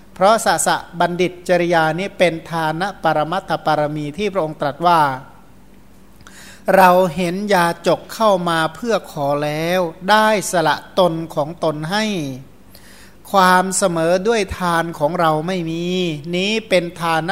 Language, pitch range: Thai, 160-195 Hz